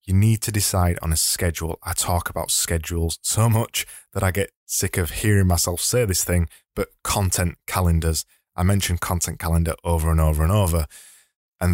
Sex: male